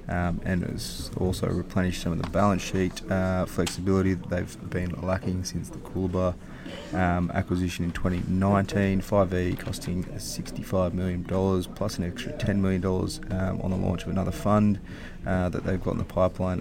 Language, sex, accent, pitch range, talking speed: English, male, Australian, 90-95 Hz, 165 wpm